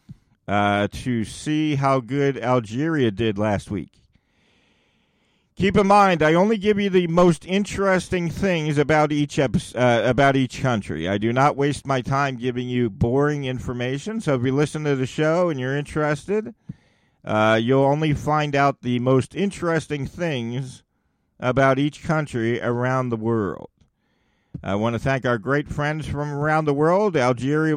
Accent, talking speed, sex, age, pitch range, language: American, 160 wpm, male, 50-69, 125-160 Hz, English